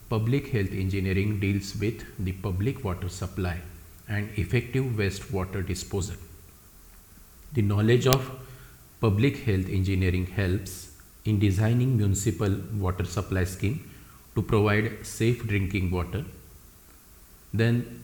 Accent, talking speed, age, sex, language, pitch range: Indian, 110 wpm, 50-69, male, English, 95-115 Hz